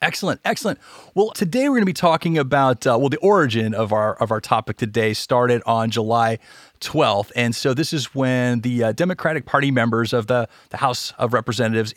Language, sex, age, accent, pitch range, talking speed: English, male, 30-49, American, 115-135 Hz, 200 wpm